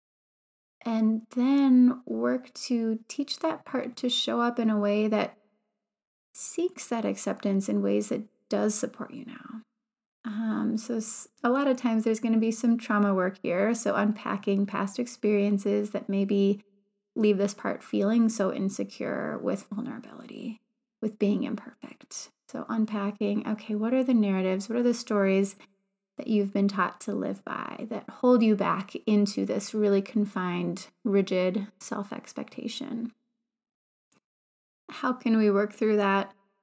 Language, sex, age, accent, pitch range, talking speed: English, female, 30-49, American, 205-240 Hz, 145 wpm